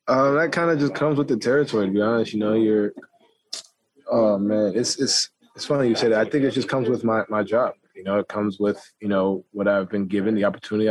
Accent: American